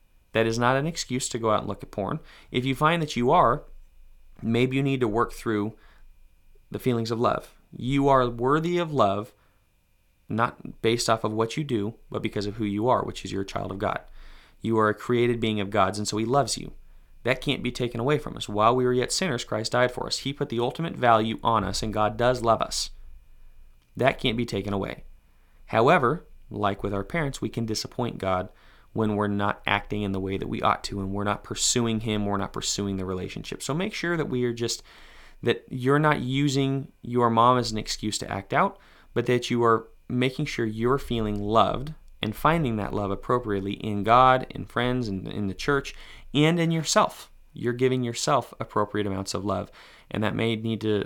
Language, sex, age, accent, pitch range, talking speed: English, male, 30-49, American, 100-125 Hz, 215 wpm